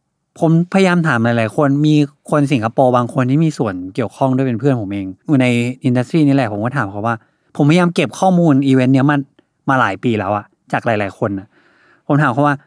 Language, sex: Thai, male